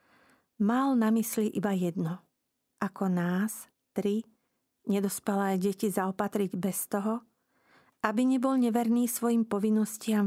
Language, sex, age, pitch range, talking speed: Slovak, female, 40-59, 195-235 Hz, 105 wpm